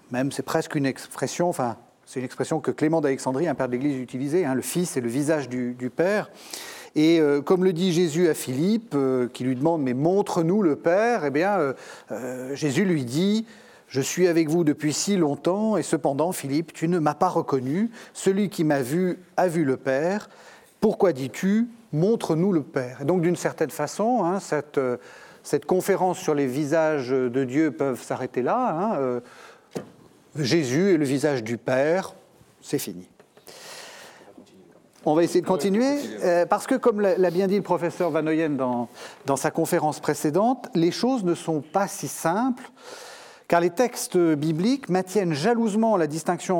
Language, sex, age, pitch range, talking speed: French, male, 40-59, 140-195 Hz, 180 wpm